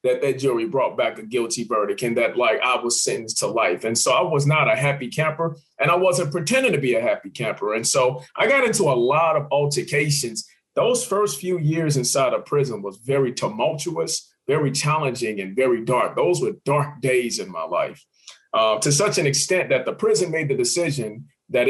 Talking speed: 210 wpm